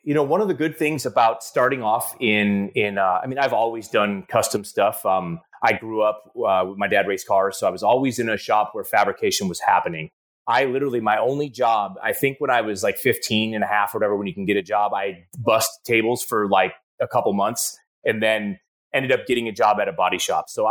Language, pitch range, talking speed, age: English, 105-130 Hz, 245 wpm, 30-49